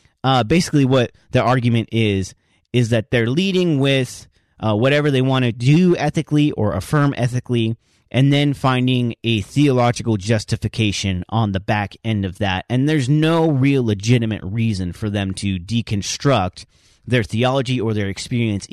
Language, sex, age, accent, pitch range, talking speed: English, male, 30-49, American, 105-145 Hz, 155 wpm